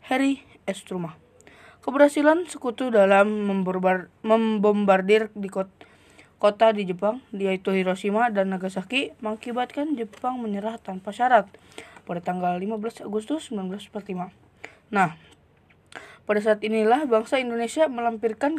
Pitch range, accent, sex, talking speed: 190-235 Hz, native, female, 100 wpm